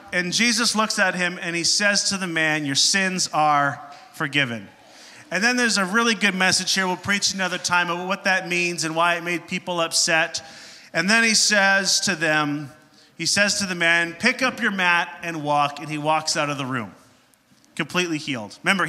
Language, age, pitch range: English, 30-49, 155-195 Hz